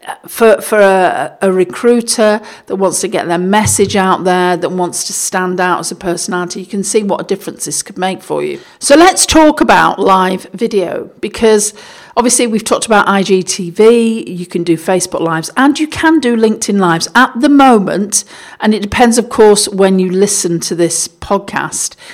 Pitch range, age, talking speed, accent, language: 180-220 Hz, 50-69, 185 wpm, British, English